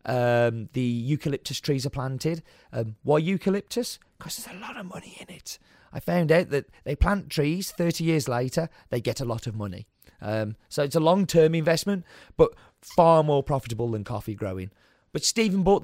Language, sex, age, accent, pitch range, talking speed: English, male, 30-49, British, 120-160 Hz, 185 wpm